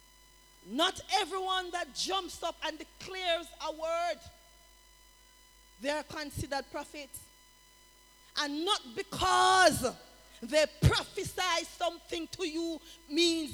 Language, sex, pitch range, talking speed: English, female, 240-335 Hz, 95 wpm